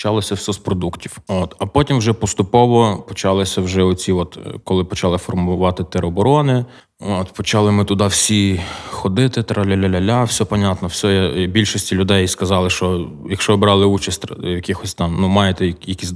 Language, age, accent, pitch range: Ukrainian, 20-39, native, 90-110 Hz